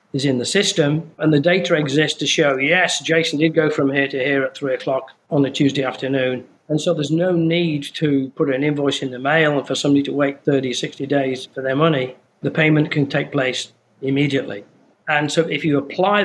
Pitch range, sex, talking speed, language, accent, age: 135-155 Hz, male, 220 wpm, English, British, 40-59